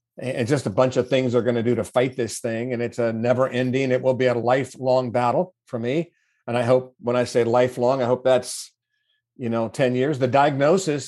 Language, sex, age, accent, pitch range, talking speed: English, male, 50-69, American, 120-130 Hz, 235 wpm